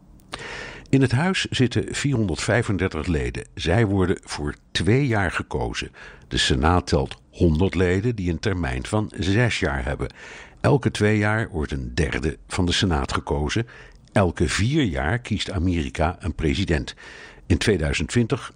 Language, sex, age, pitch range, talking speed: Dutch, male, 60-79, 80-110 Hz, 140 wpm